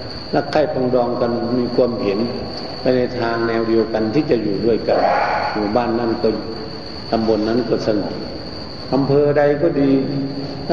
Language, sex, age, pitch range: Thai, male, 60-79, 120-145 Hz